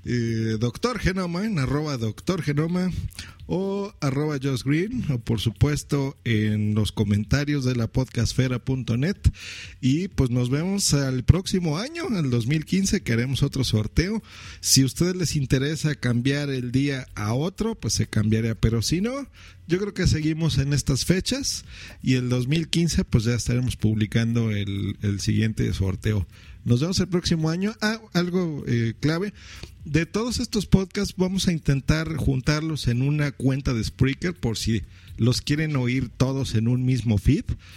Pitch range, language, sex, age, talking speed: 110-155 Hz, Spanish, male, 40-59, 155 wpm